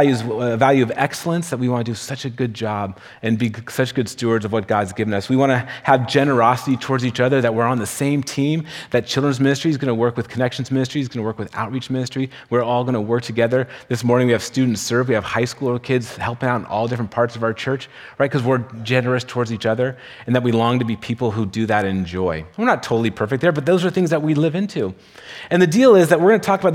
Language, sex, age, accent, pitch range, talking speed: English, male, 30-49, American, 120-155 Hz, 270 wpm